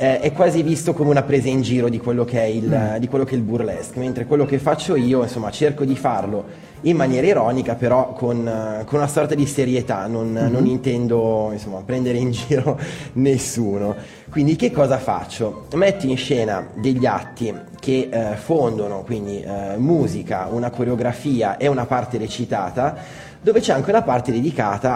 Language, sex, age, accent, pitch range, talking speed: Italian, male, 20-39, native, 110-135 Hz, 170 wpm